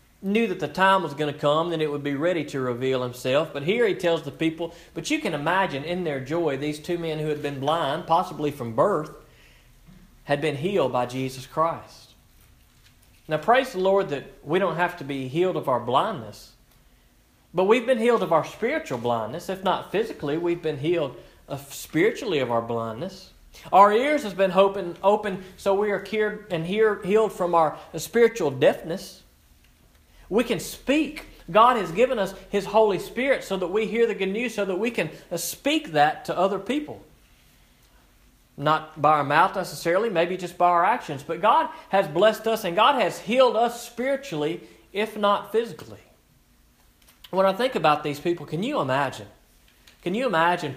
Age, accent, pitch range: 40-59, American, 145-195 Hz